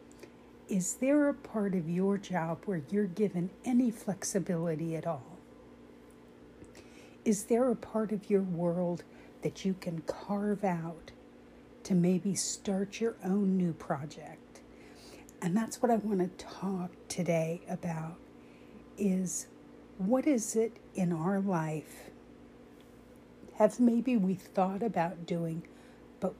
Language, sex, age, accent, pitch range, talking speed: English, female, 60-79, American, 155-195 Hz, 125 wpm